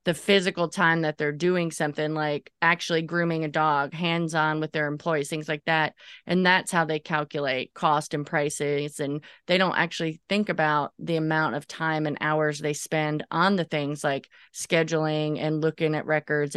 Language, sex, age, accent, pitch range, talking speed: English, female, 20-39, American, 150-175 Hz, 180 wpm